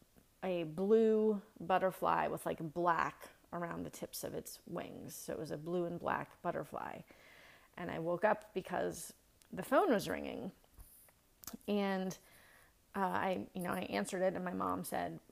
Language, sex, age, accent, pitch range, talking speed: English, female, 30-49, American, 175-210 Hz, 160 wpm